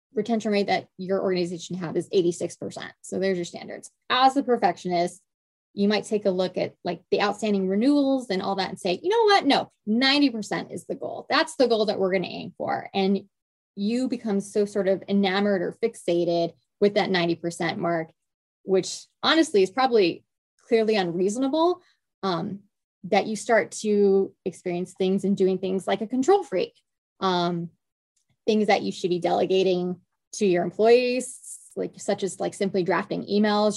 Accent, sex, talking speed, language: American, female, 170 wpm, English